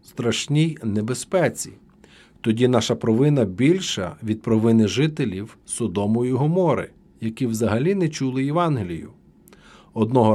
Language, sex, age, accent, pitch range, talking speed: Ukrainian, male, 50-69, native, 115-155 Hz, 105 wpm